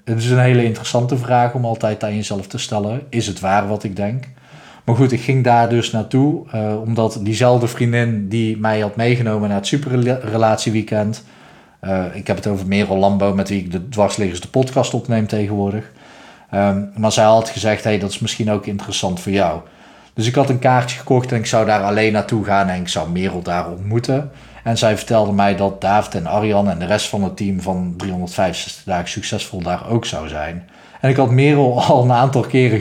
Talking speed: 205 wpm